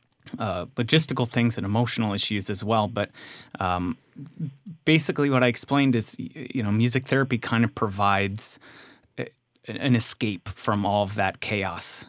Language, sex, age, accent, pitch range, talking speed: English, male, 30-49, American, 100-125 Hz, 145 wpm